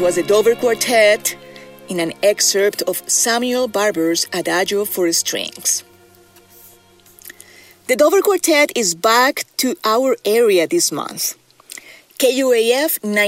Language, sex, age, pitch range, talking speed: English, female, 30-49, 180-245 Hz, 115 wpm